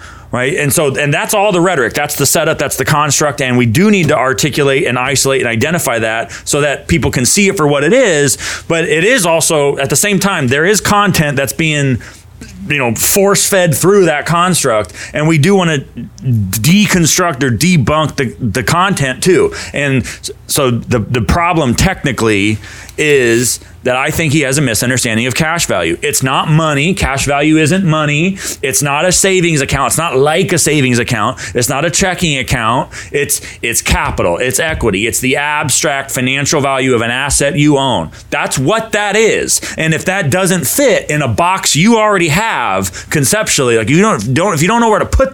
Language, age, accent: English, 30-49, American